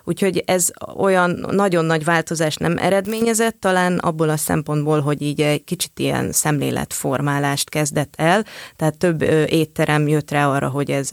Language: Hungarian